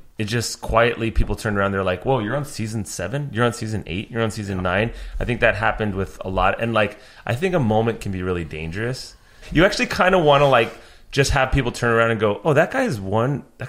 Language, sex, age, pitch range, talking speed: English, male, 30-49, 95-115 Hz, 250 wpm